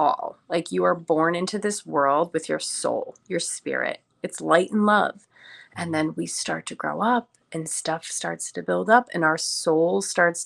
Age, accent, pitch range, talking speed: 30-49, American, 155-205 Hz, 190 wpm